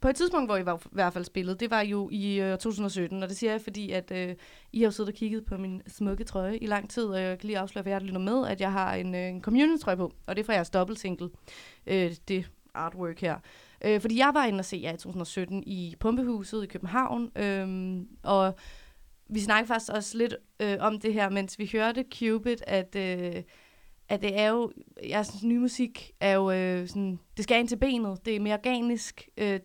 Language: Danish